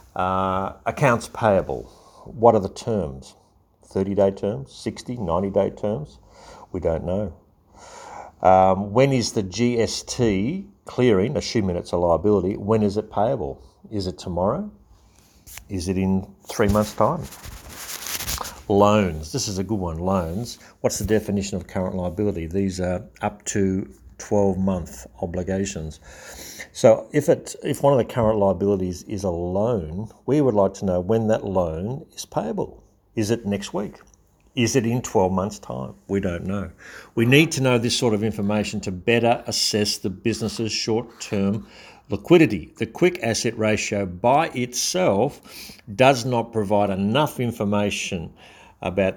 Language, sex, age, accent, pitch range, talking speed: English, male, 50-69, Australian, 95-110 Hz, 150 wpm